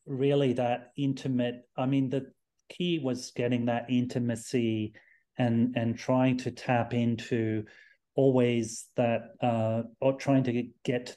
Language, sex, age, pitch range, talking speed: English, male, 40-59, 110-125 Hz, 135 wpm